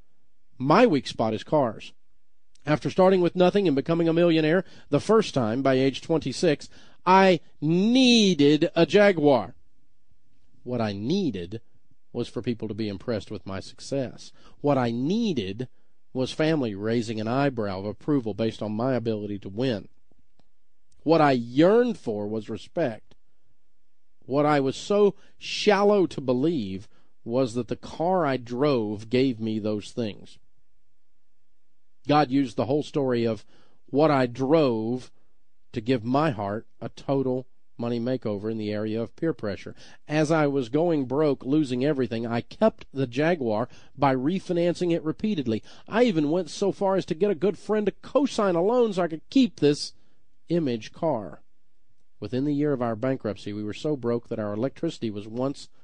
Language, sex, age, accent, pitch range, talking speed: English, male, 40-59, American, 115-165 Hz, 160 wpm